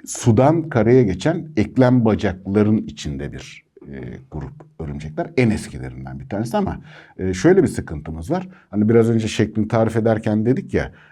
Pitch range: 95-135 Hz